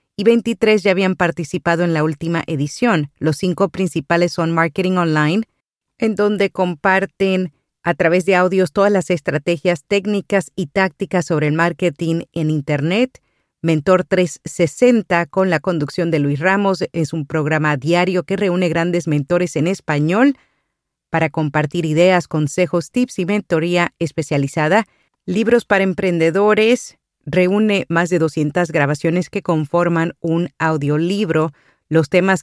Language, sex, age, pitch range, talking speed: Spanish, female, 40-59, 160-190 Hz, 135 wpm